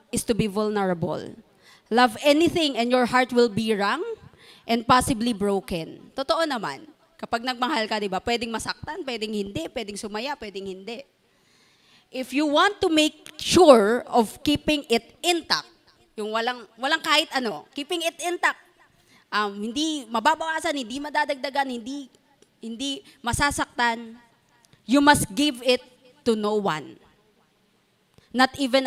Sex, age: female, 20-39